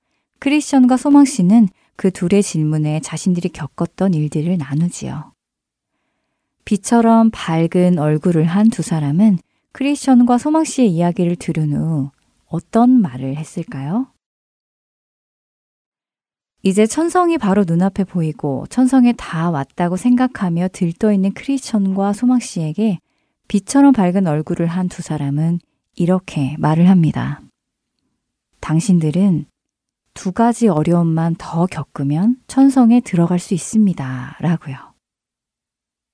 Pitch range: 160-235 Hz